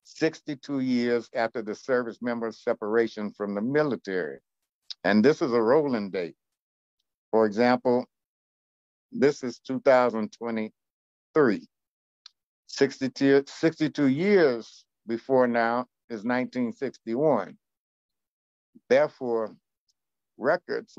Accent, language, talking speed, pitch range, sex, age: American, English, 85 wpm, 110-130 Hz, male, 60-79